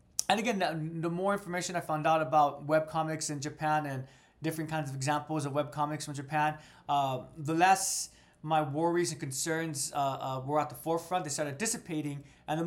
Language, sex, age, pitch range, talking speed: English, male, 20-39, 140-165 Hz, 190 wpm